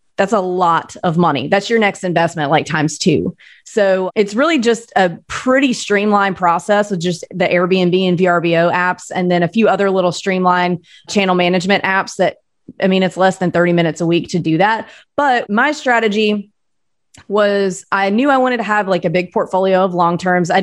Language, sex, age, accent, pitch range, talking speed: English, female, 30-49, American, 175-205 Hz, 195 wpm